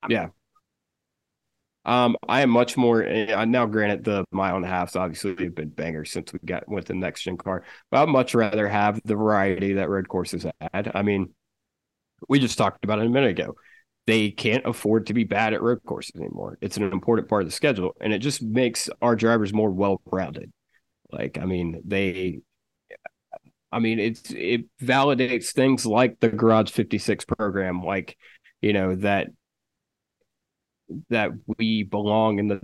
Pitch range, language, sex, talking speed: 100-120 Hz, English, male, 175 wpm